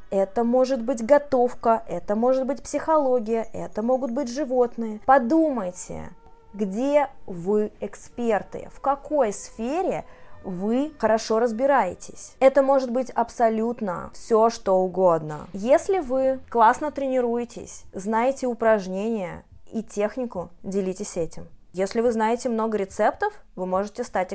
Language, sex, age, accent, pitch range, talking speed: Russian, female, 20-39, native, 205-270 Hz, 115 wpm